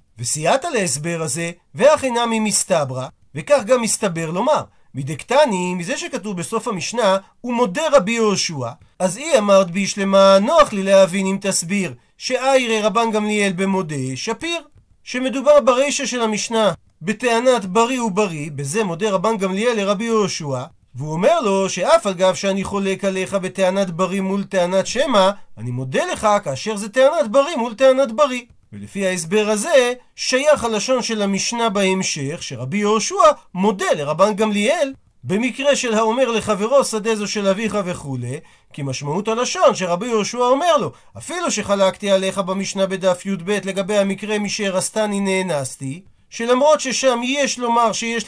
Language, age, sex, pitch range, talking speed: Hebrew, 40-59, male, 185-235 Hz, 145 wpm